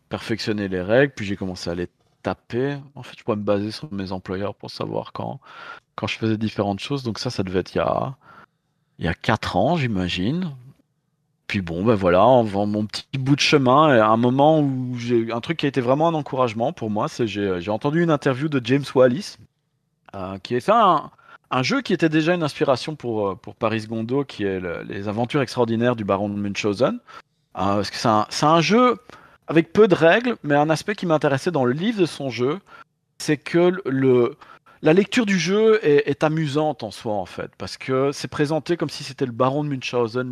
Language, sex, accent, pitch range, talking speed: French, male, French, 110-150 Hz, 215 wpm